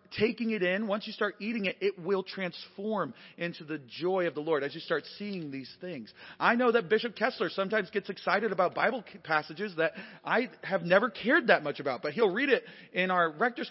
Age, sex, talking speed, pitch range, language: 30-49, male, 215 wpm, 155-215 Hz, English